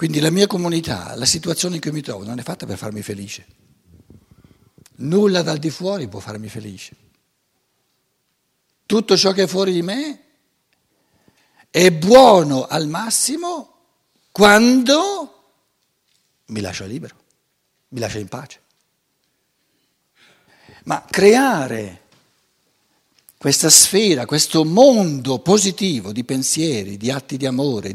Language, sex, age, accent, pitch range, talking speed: Italian, male, 60-79, native, 125-190 Hz, 120 wpm